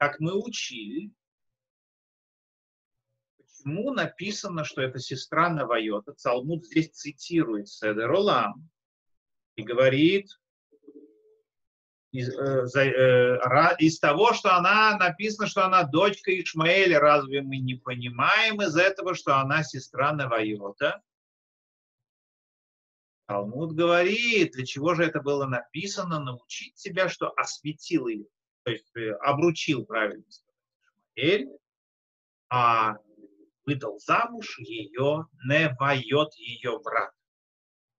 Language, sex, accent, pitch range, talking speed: Russian, male, native, 125-190 Hz, 105 wpm